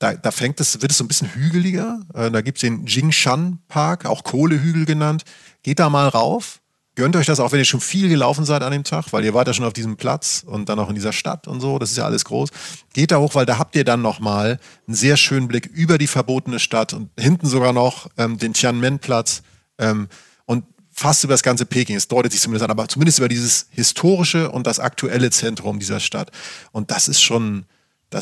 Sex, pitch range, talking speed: male, 120-155 Hz, 225 wpm